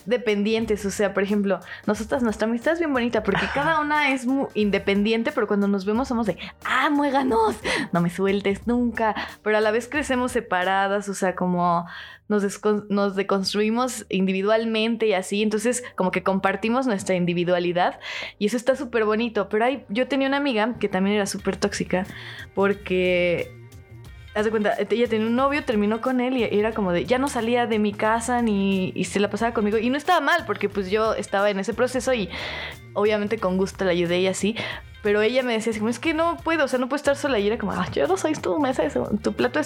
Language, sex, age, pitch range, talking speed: Spanish, female, 20-39, 195-250 Hz, 215 wpm